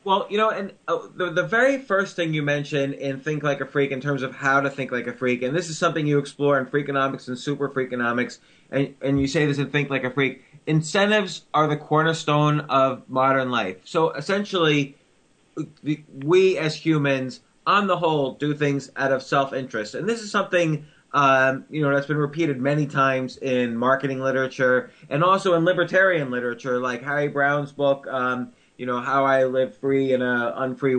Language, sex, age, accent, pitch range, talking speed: English, male, 20-39, American, 130-155 Hz, 195 wpm